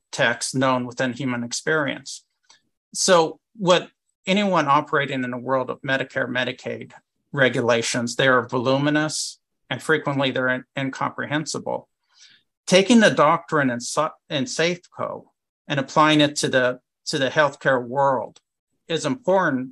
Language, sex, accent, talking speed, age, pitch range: English, male, American, 120 wpm, 50-69, 130-155 Hz